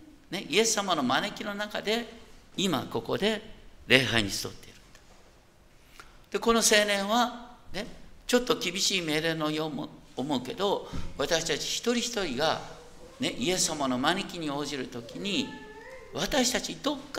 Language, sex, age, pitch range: Japanese, male, 50-69, 155-235 Hz